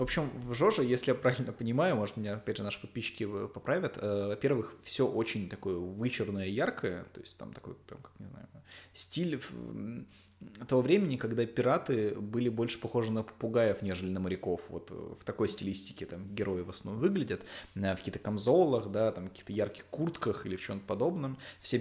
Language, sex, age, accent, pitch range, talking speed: Russian, male, 20-39, native, 95-120 Hz, 180 wpm